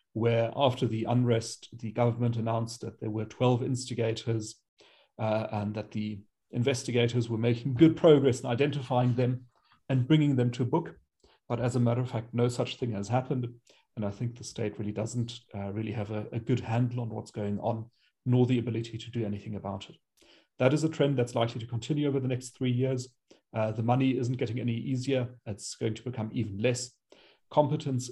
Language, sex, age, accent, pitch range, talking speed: English, male, 40-59, German, 115-125 Hz, 200 wpm